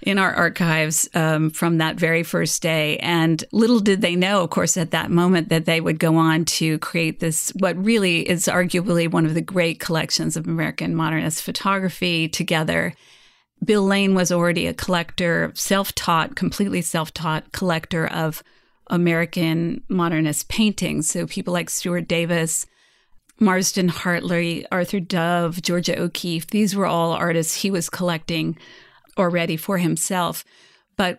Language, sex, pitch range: English, female, 165-185 Hz